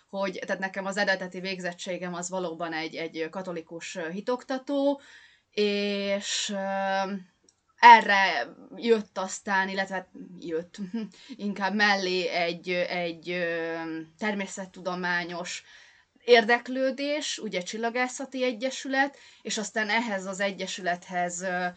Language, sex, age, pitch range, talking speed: Hungarian, female, 20-39, 175-220 Hz, 90 wpm